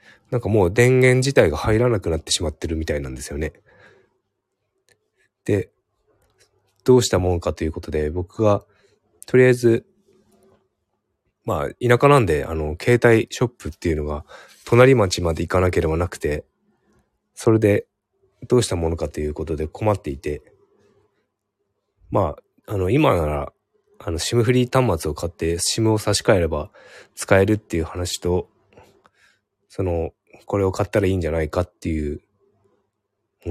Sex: male